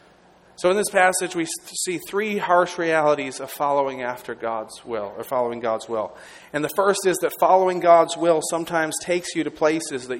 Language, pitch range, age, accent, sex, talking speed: English, 145-180 Hz, 40-59, American, male, 190 wpm